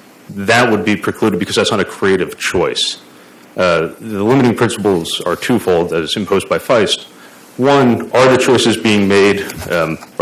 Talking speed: 160 wpm